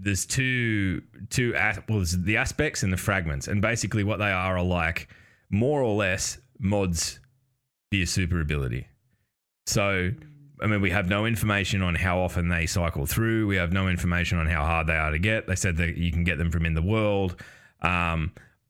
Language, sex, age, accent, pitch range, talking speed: English, male, 20-39, Australian, 90-115 Hz, 190 wpm